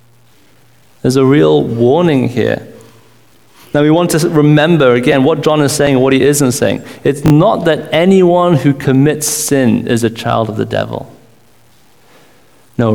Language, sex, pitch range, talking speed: English, male, 115-145 Hz, 160 wpm